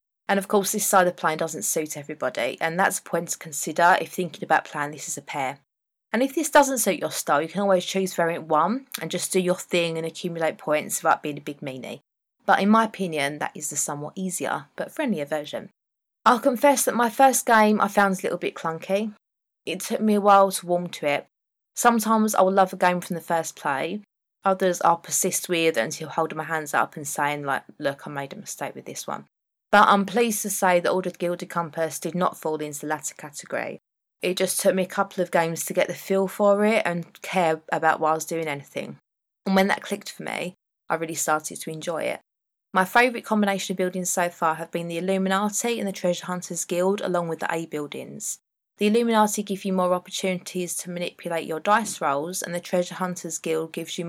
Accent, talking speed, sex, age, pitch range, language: British, 220 wpm, female, 20-39, 160-195 Hz, English